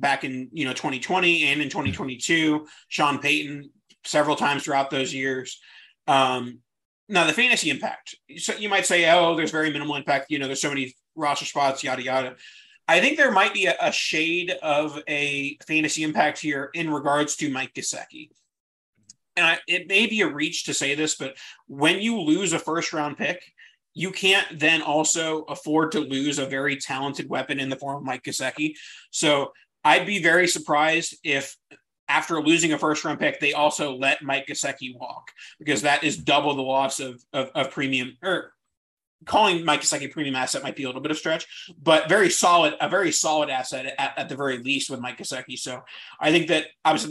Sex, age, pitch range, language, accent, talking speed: male, 30-49, 135-160 Hz, English, American, 185 wpm